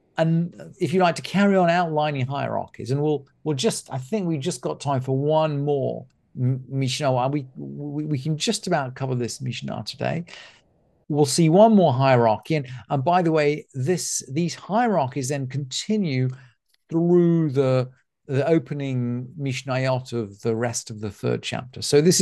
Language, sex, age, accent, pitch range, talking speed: English, male, 50-69, British, 125-165 Hz, 165 wpm